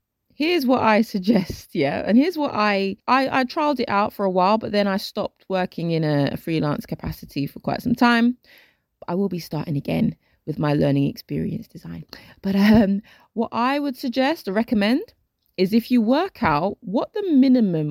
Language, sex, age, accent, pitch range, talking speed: English, female, 20-39, British, 165-240 Hz, 190 wpm